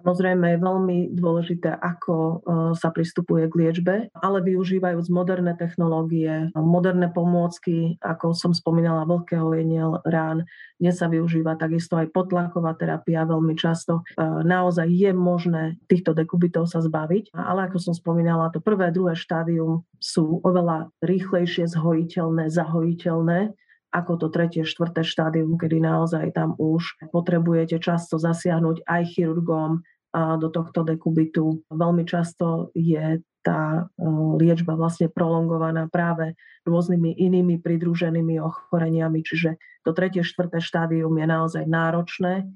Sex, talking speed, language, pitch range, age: female, 125 wpm, Slovak, 165-175 Hz, 40-59